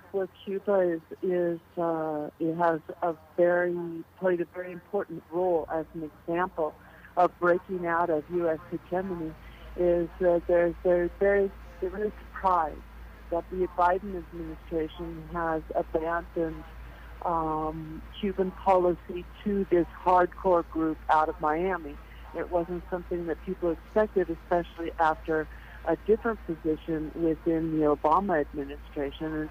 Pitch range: 160-180 Hz